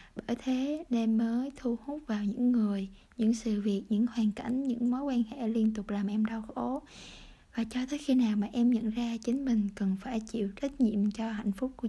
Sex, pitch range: female, 215-255 Hz